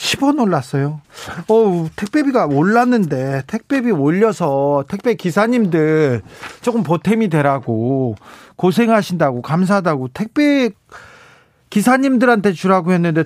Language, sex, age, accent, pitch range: Korean, male, 40-59, native, 135-185 Hz